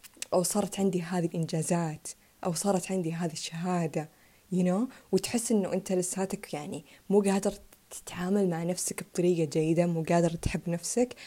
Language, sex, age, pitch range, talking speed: Arabic, female, 20-39, 170-210 Hz, 155 wpm